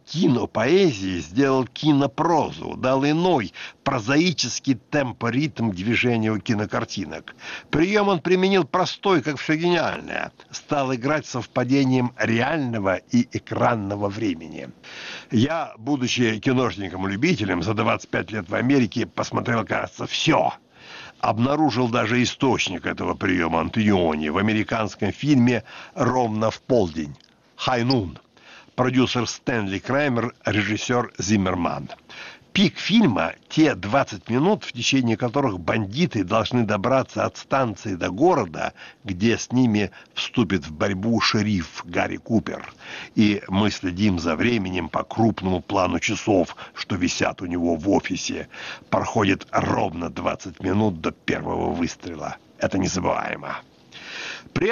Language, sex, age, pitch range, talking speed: Russian, male, 60-79, 105-145 Hz, 110 wpm